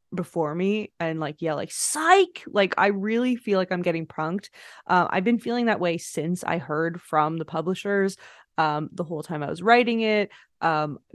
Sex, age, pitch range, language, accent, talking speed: female, 20-39, 170-215 Hz, English, American, 195 wpm